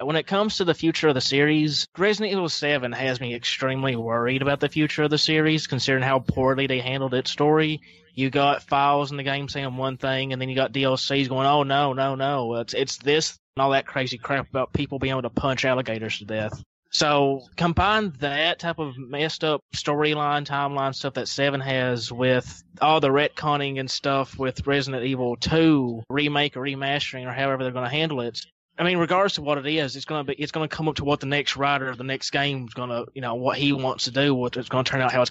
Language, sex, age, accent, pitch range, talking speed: English, male, 20-39, American, 130-150 Hz, 240 wpm